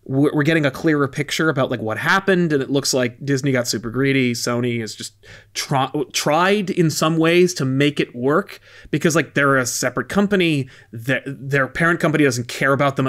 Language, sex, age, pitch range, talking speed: English, male, 30-49, 120-155 Hz, 195 wpm